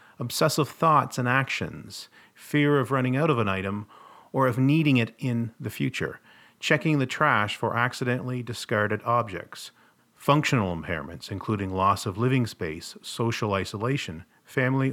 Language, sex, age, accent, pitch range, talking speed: English, male, 40-59, American, 110-140 Hz, 140 wpm